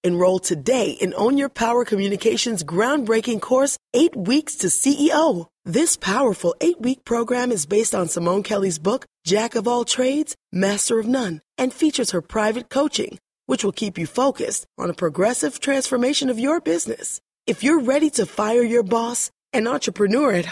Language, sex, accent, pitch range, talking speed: English, female, American, 190-275 Hz, 165 wpm